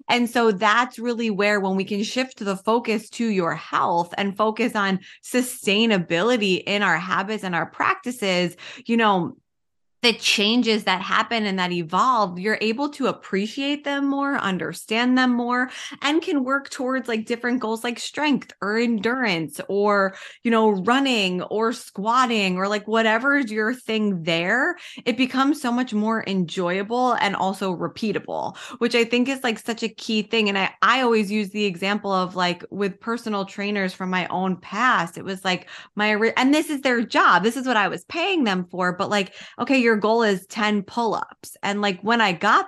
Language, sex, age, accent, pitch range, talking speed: English, female, 20-39, American, 195-240 Hz, 185 wpm